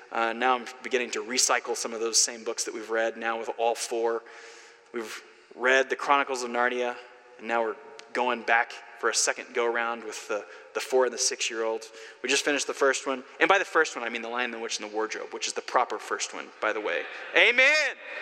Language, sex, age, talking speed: English, male, 20-39, 230 wpm